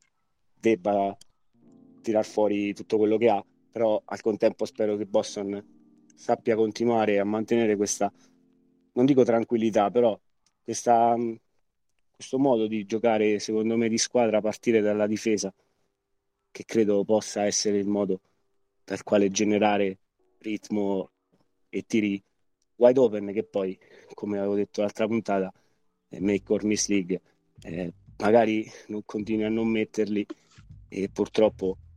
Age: 20-39